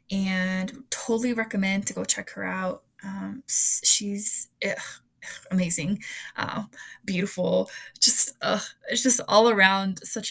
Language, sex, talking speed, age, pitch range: English, female, 130 wpm, 20-39, 185-215 Hz